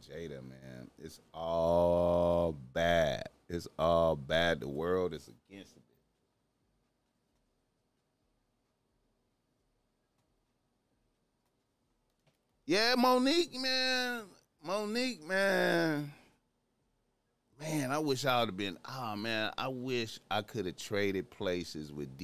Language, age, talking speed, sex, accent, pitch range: English, 30-49, 95 wpm, male, American, 85-120 Hz